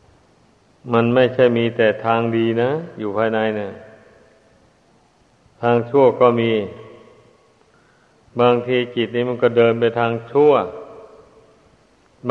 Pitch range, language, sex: 115-125 Hz, Thai, male